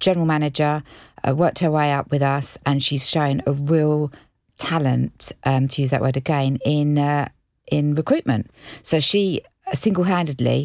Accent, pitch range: British, 130-160 Hz